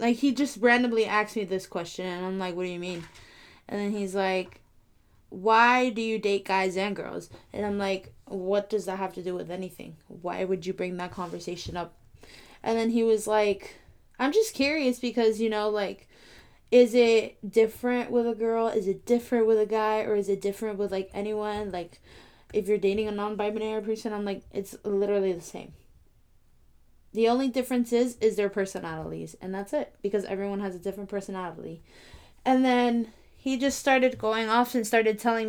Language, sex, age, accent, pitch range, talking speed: English, female, 20-39, American, 190-235 Hz, 195 wpm